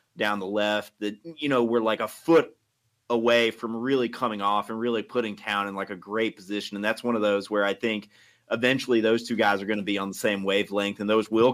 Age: 30-49